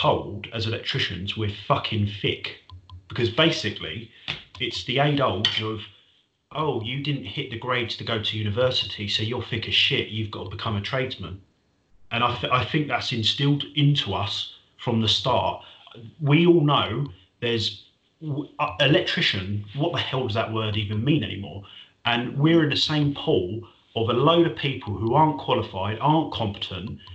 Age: 30-49